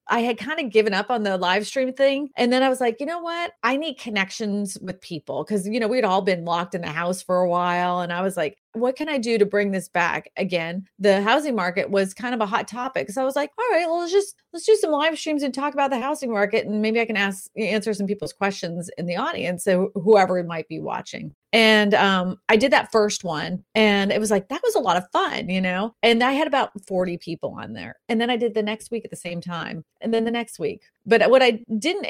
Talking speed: 265 wpm